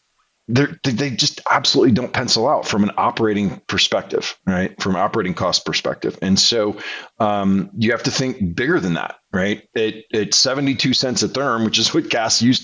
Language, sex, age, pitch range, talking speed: English, male, 40-59, 105-140 Hz, 170 wpm